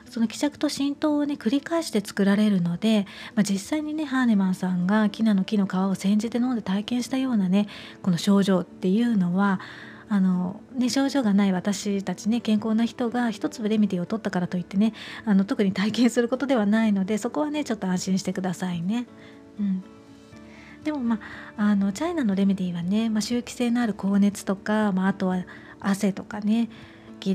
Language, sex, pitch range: Japanese, female, 190-240 Hz